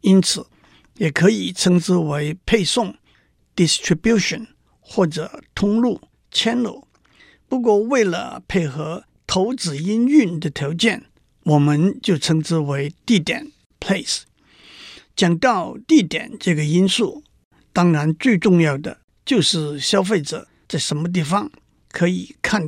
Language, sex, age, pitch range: Chinese, male, 50-69, 155-205 Hz